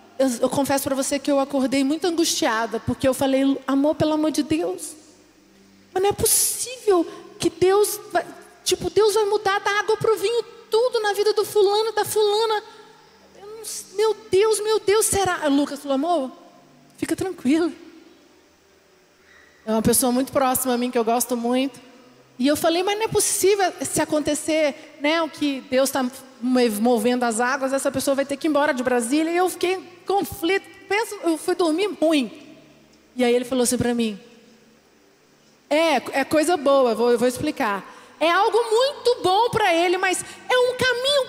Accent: Brazilian